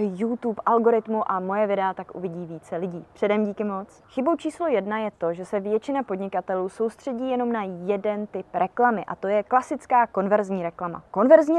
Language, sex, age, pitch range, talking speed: Czech, female, 20-39, 195-245 Hz, 175 wpm